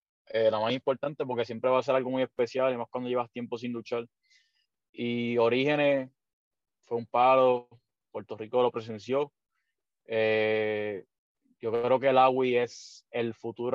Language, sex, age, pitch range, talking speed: Spanish, male, 20-39, 120-145 Hz, 160 wpm